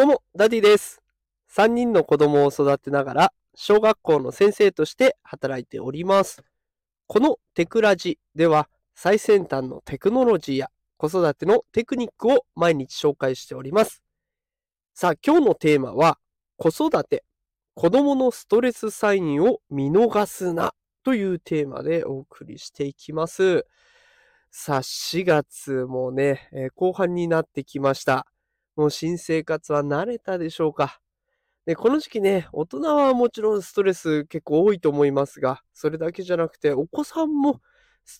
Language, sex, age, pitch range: Japanese, male, 20-39, 145-235 Hz